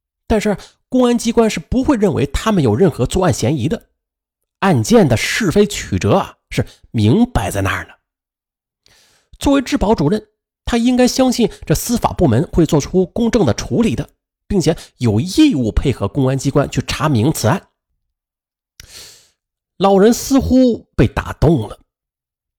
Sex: male